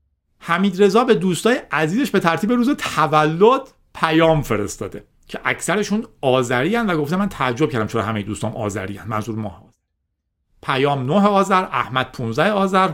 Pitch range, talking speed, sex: 125-210 Hz, 150 wpm, male